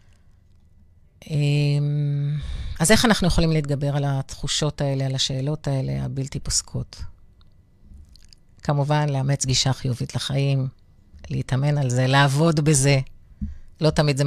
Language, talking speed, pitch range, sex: Hebrew, 110 wpm, 125-180 Hz, female